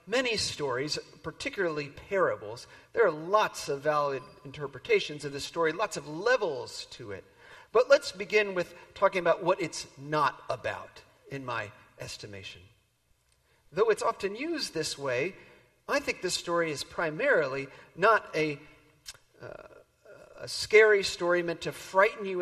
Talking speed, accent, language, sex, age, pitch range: 140 wpm, American, English, male, 40-59, 145-205 Hz